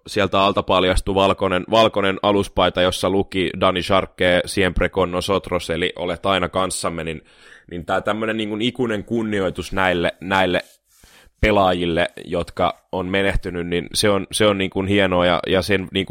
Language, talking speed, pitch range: Finnish, 130 wpm, 90-100 Hz